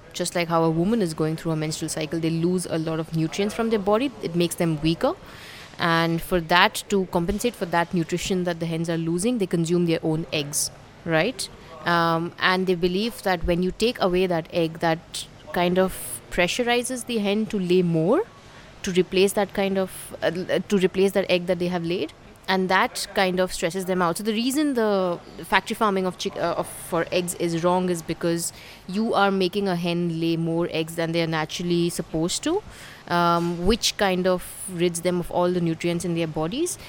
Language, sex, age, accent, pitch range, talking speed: English, female, 30-49, Indian, 165-190 Hz, 205 wpm